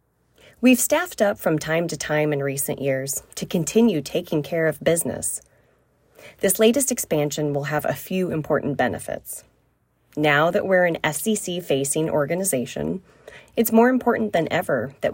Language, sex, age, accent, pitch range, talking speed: English, female, 20-39, American, 145-205 Hz, 150 wpm